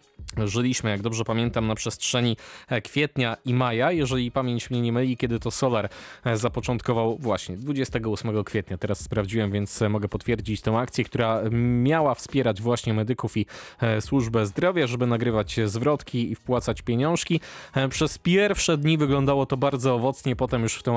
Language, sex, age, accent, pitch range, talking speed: Polish, male, 20-39, native, 110-130 Hz, 150 wpm